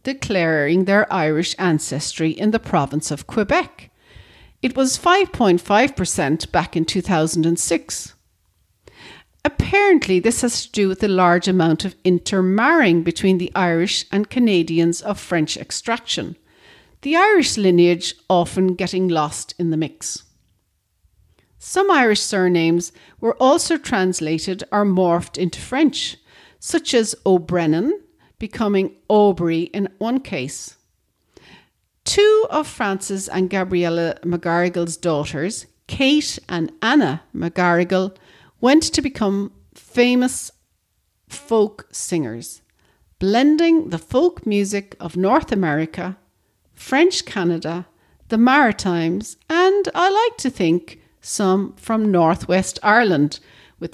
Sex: female